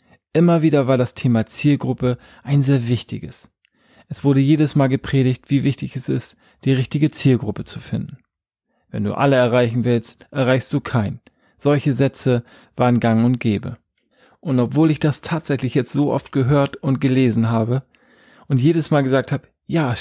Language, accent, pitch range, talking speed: German, German, 125-150 Hz, 170 wpm